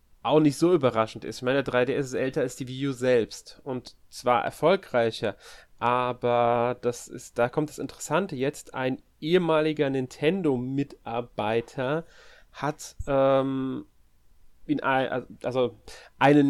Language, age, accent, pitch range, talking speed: German, 30-49, German, 125-150 Hz, 125 wpm